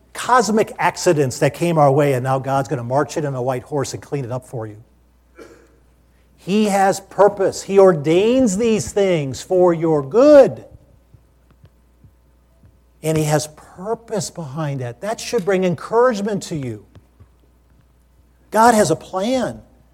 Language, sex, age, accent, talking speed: English, male, 50-69, American, 145 wpm